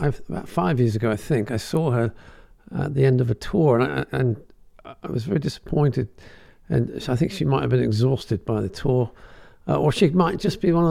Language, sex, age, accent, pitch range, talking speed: English, male, 50-69, British, 115-145 Hz, 220 wpm